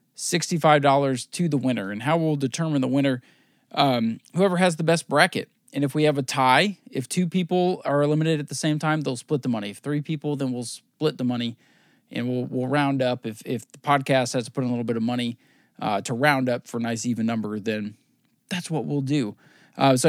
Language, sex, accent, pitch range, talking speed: English, male, American, 120-155 Hz, 235 wpm